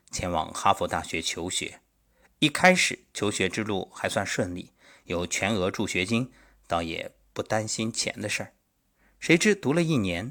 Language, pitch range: Chinese, 90-130 Hz